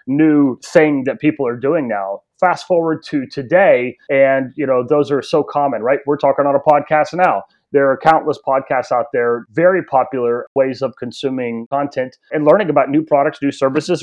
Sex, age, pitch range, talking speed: male, 30-49, 130-155 Hz, 190 wpm